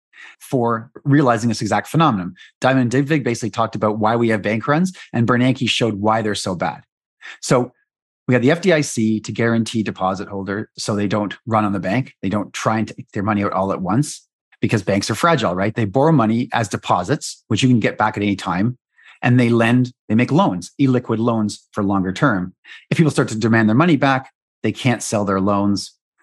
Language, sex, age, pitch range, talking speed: English, male, 30-49, 110-135 Hz, 210 wpm